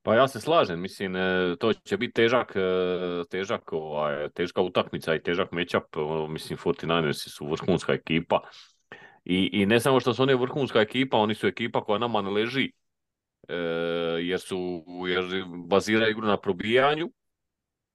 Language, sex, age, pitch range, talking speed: Croatian, male, 30-49, 95-130 Hz, 145 wpm